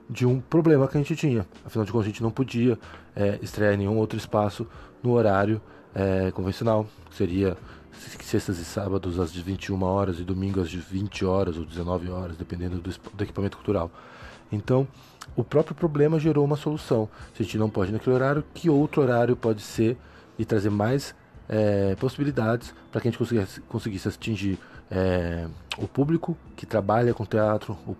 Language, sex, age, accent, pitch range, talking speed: Portuguese, male, 20-39, Brazilian, 95-120 Hz, 185 wpm